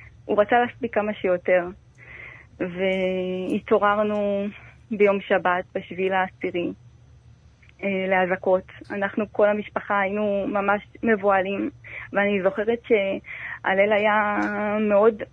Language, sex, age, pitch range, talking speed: Hebrew, female, 20-39, 195-225 Hz, 90 wpm